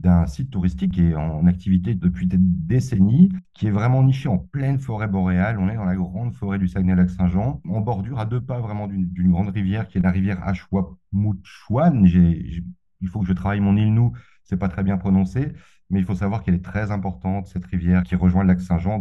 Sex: male